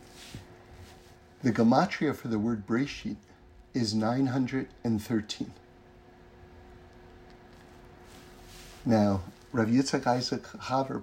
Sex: male